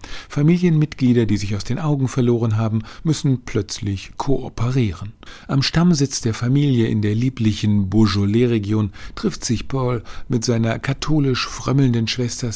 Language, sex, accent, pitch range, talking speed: German, male, German, 110-130 Hz, 125 wpm